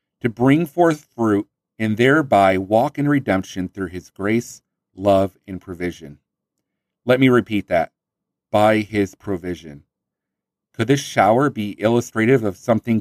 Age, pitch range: 40-59, 100-135 Hz